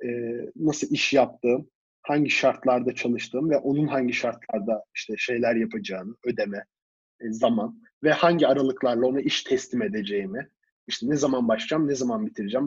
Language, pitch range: Turkish, 125-155 Hz